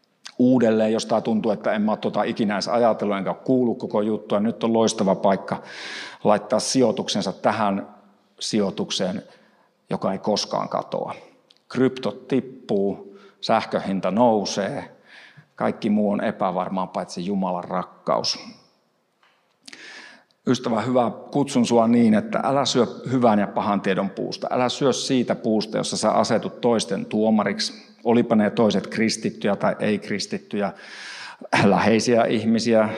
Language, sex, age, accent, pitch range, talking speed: Finnish, male, 50-69, native, 105-125 Hz, 120 wpm